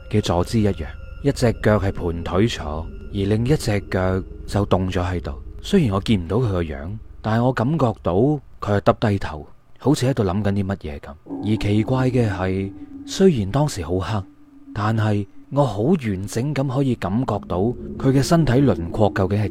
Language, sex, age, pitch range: Chinese, male, 30-49, 95-130 Hz